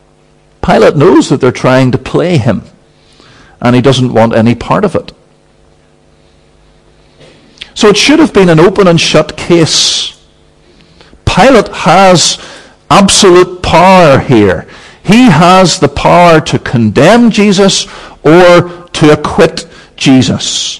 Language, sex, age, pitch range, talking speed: English, male, 50-69, 120-180 Hz, 120 wpm